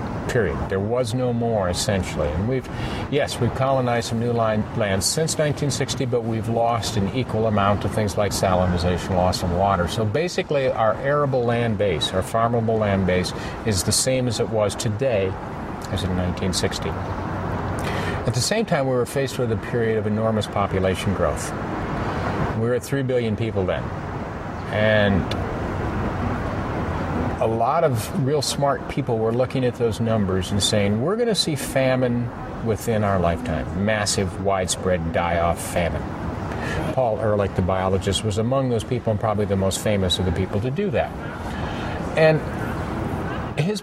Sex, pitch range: male, 95-125 Hz